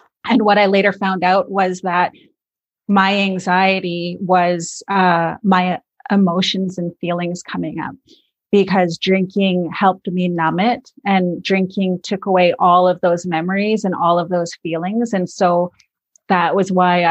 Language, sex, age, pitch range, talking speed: English, female, 30-49, 175-195 Hz, 145 wpm